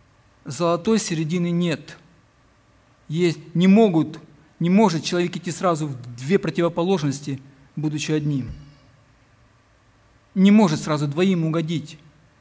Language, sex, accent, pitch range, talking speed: Ukrainian, male, native, 145-185 Hz, 100 wpm